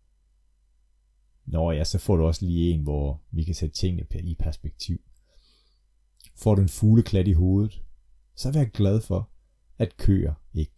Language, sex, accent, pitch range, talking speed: Danish, male, native, 65-100 Hz, 160 wpm